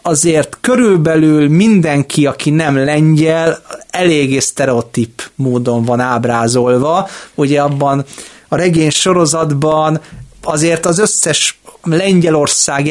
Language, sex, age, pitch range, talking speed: Hungarian, male, 30-49, 125-165 Hz, 95 wpm